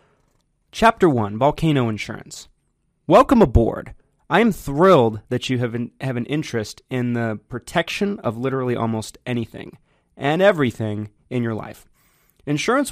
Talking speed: 130 wpm